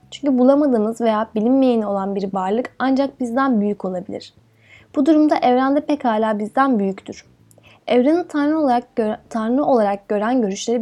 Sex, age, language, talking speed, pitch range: female, 10-29, Turkish, 140 wpm, 210-275 Hz